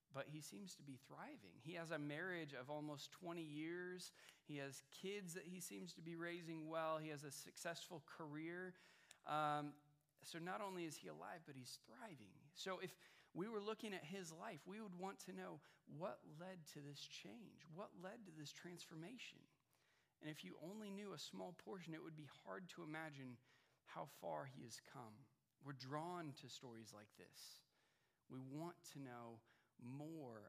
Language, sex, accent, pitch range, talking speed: English, male, American, 130-165 Hz, 180 wpm